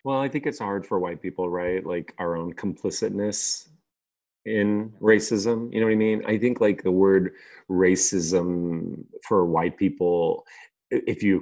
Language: English